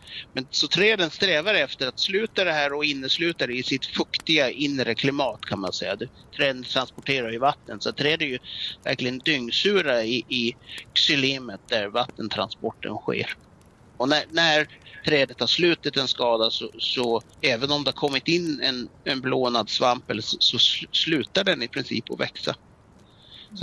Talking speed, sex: 165 wpm, male